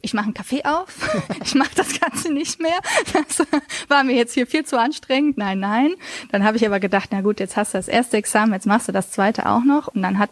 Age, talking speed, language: 20-39, 255 wpm, German